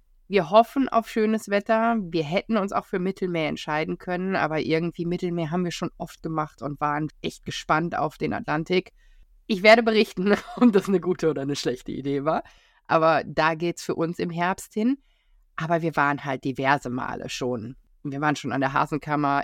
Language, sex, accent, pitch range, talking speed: German, female, German, 145-195 Hz, 190 wpm